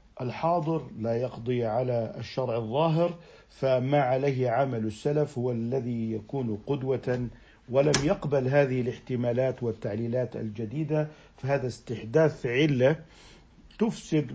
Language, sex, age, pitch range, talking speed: Arabic, male, 50-69, 115-145 Hz, 100 wpm